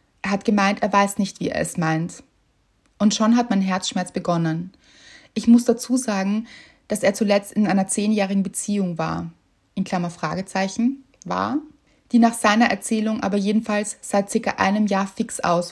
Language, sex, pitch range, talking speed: German, female, 190-225 Hz, 170 wpm